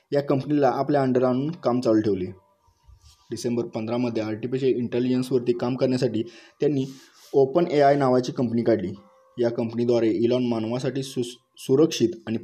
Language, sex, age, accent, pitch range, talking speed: Marathi, male, 20-39, native, 115-135 Hz, 125 wpm